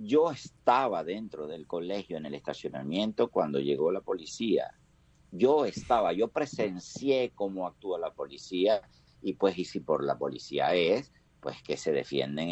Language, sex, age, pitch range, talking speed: Spanish, male, 50-69, 85-135 Hz, 155 wpm